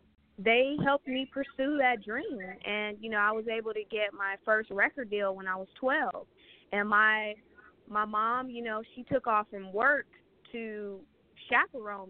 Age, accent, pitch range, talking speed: 20-39, American, 205-240 Hz, 175 wpm